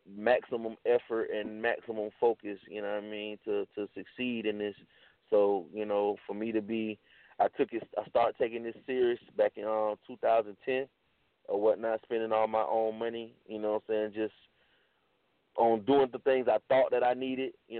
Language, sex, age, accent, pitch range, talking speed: English, male, 30-49, American, 105-125 Hz, 200 wpm